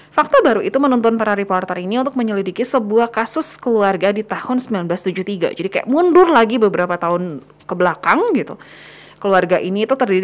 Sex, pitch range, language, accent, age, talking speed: female, 195-275 Hz, Indonesian, native, 30-49, 165 wpm